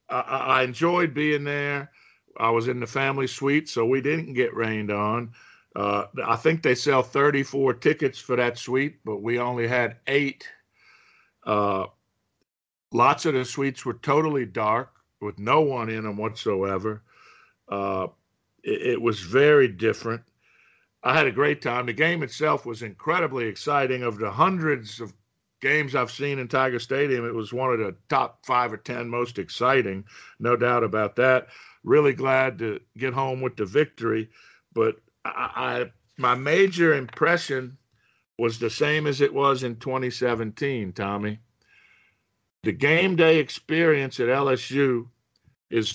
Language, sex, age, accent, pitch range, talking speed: English, male, 50-69, American, 115-145 Hz, 155 wpm